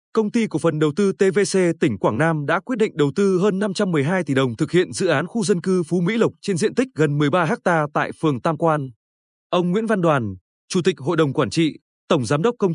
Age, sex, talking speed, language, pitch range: 20-39, male, 250 wpm, Vietnamese, 145-195 Hz